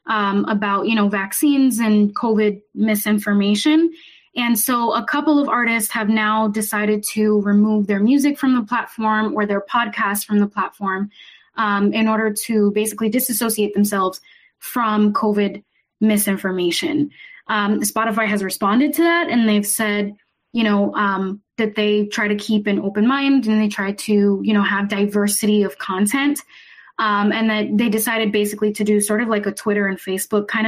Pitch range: 205-245 Hz